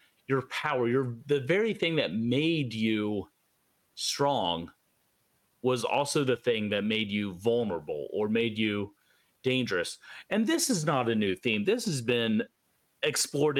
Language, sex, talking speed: English, male, 145 wpm